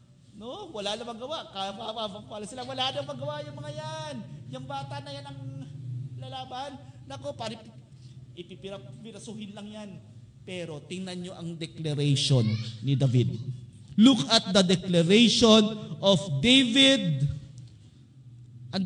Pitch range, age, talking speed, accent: 130-215 Hz, 40-59, 120 wpm, native